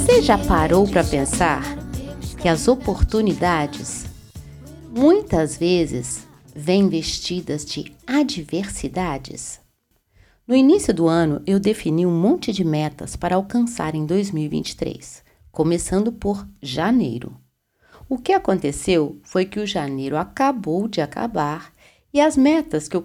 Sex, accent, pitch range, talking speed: female, Brazilian, 155-235 Hz, 120 wpm